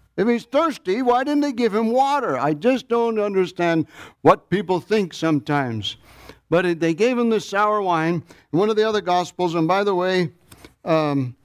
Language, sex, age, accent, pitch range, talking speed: English, male, 60-79, American, 135-180 Hz, 180 wpm